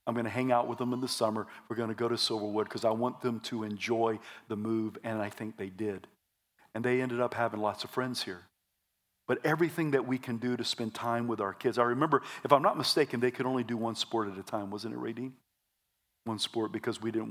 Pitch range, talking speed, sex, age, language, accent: 110-130 Hz, 250 wpm, male, 50-69, English, American